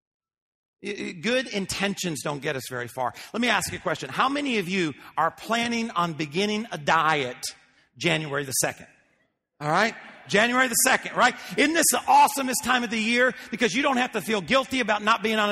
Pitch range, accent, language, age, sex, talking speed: 175-235 Hz, American, English, 50-69, male, 195 wpm